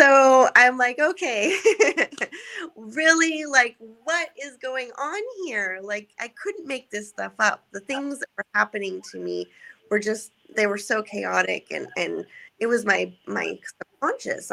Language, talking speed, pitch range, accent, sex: English, 155 wpm, 190-270 Hz, American, female